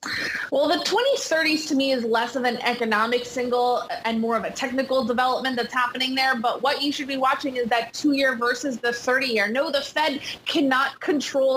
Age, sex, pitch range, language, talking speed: 20-39, female, 255-305 Hz, English, 190 wpm